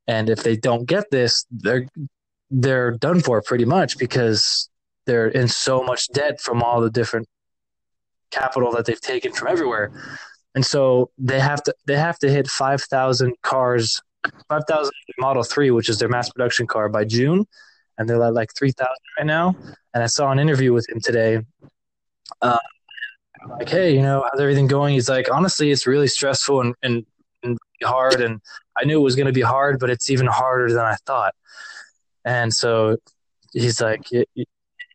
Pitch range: 120-140 Hz